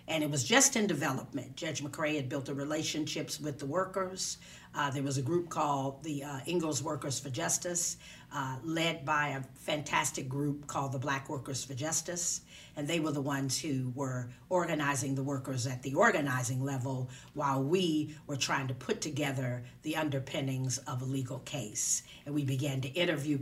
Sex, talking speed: female, 180 wpm